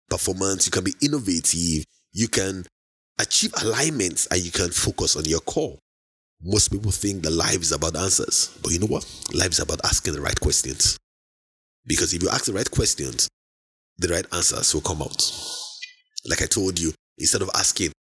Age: 30-49